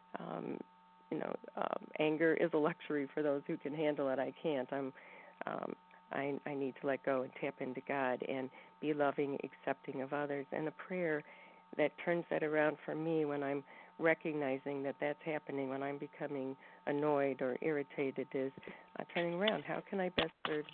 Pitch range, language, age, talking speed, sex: 140-160 Hz, English, 50-69, 185 wpm, female